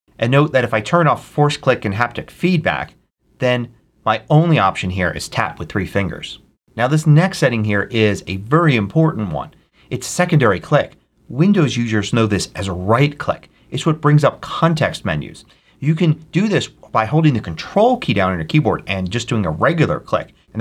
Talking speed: 200 wpm